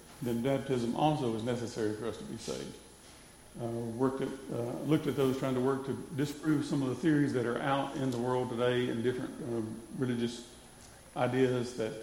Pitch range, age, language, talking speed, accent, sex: 115-135 Hz, 50-69, English, 185 wpm, American, male